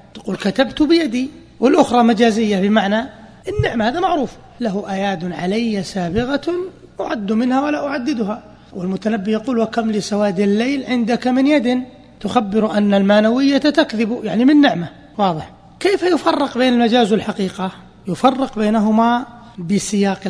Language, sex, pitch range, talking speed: Arabic, male, 195-255 Hz, 120 wpm